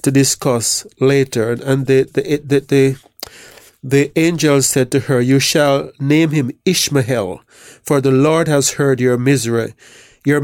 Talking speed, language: 150 wpm, English